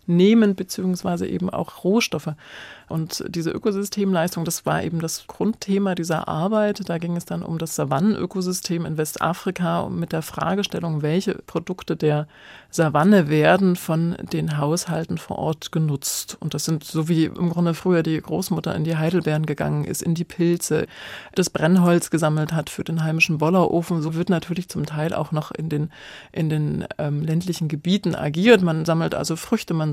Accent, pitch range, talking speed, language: German, 160-185 Hz, 170 wpm, German